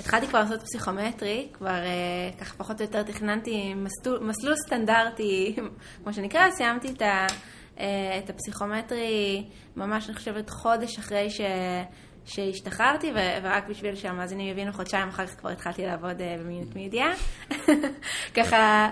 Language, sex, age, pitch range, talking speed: Hebrew, female, 20-39, 200-255 Hz, 115 wpm